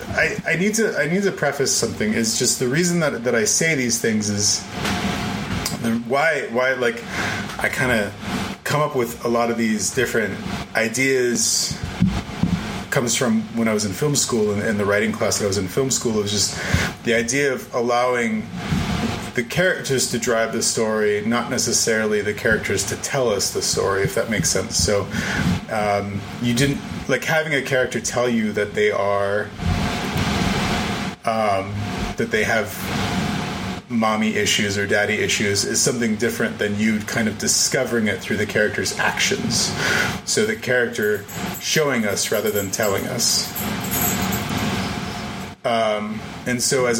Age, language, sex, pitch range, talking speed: 30-49, English, male, 105-130 Hz, 160 wpm